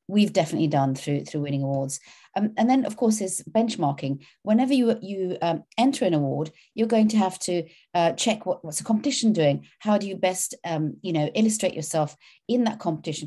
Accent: British